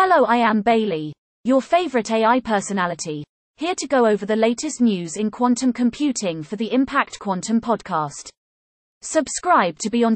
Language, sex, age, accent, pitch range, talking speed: English, female, 30-49, British, 205-265 Hz, 160 wpm